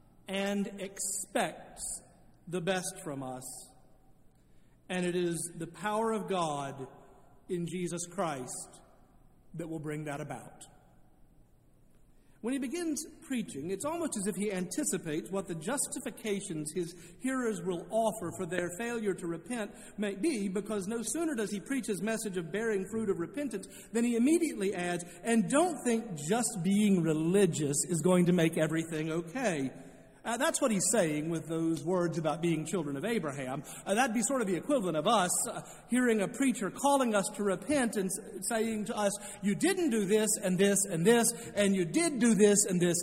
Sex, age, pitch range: male, 50-69, 170-230 Hz